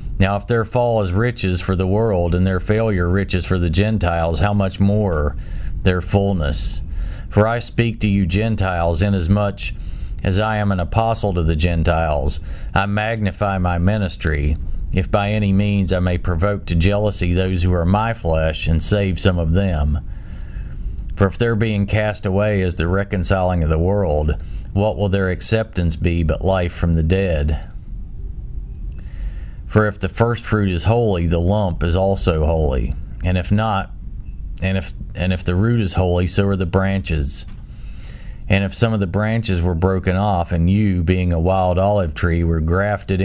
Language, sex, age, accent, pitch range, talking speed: English, male, 40-59, American, 85-100 Hz, 175 wpm